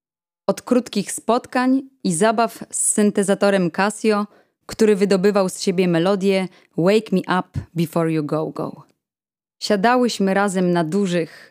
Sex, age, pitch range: female, 20-39, 175-210 Hz